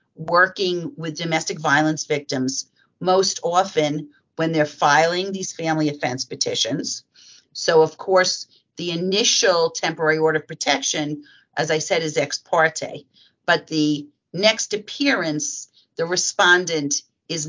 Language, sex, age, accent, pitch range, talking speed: English, female, 50-69, American, 150-175 Hz, 125 wpm